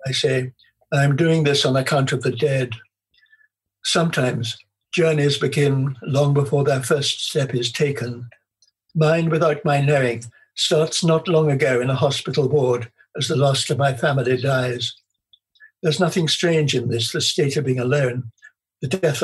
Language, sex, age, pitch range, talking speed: English, male, 60-79, 125-150 Hz, 160 wpm